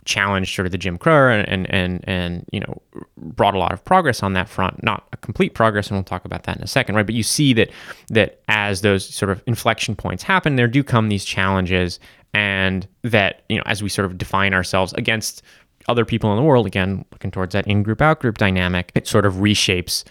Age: 20-39